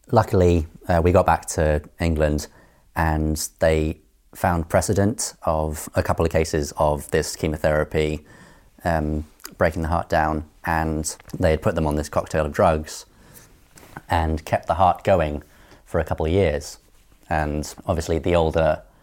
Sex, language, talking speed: male, English, 150 wpm